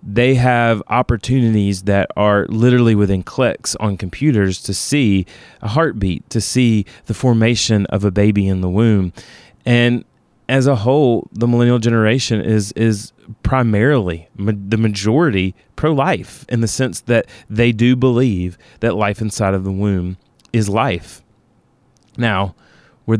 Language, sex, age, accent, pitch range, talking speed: English, male, 30-49, American, 100-120 Hz, 140 wpm